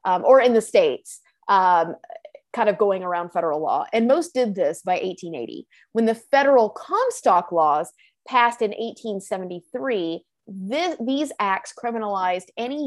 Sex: female